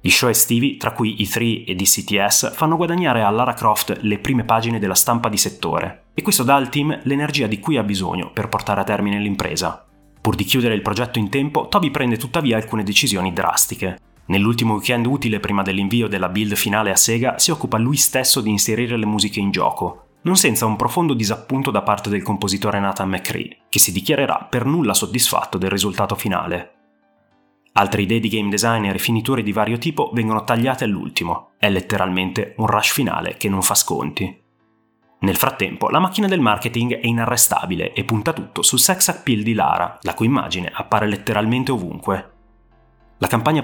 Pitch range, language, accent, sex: 100-125 Hz, Italian, native, male